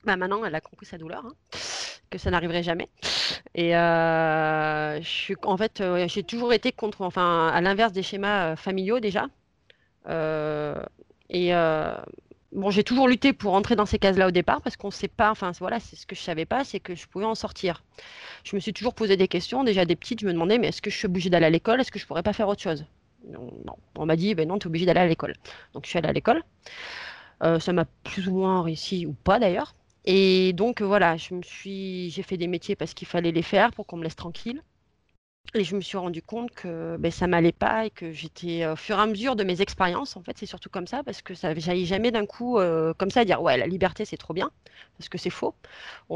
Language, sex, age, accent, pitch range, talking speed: French, female, 30-49, French, 170-210 Hz, 255 wpm